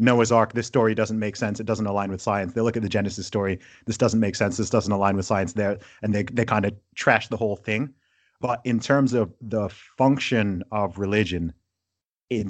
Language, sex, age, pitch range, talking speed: English, male, 30-49, 95-115 Hz, 220 wpm